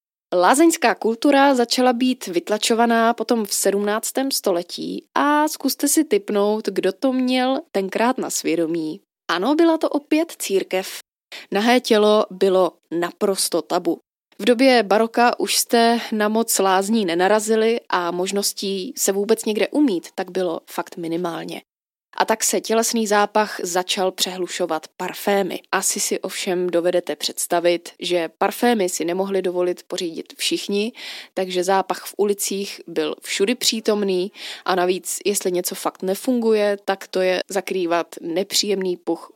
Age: 20-39